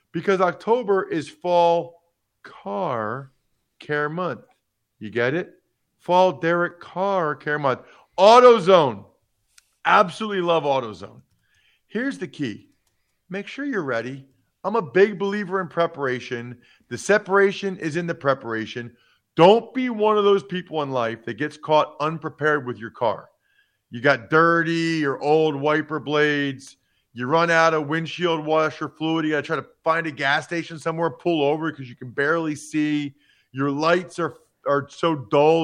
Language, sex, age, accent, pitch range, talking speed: English, male, 50-69, American, 145-195 Hz, 150 wpm